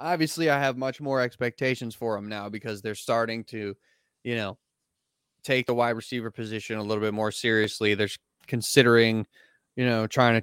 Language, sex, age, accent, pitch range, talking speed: English, male, 20-39, American, 115-145 Hz, 180 wpm